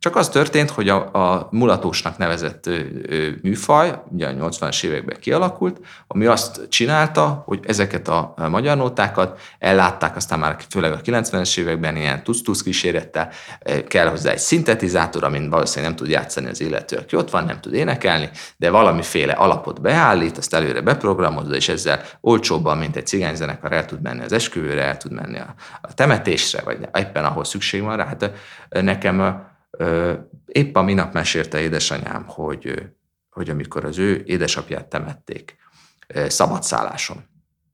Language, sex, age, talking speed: Hungarian, male, 30-49, 150 wpm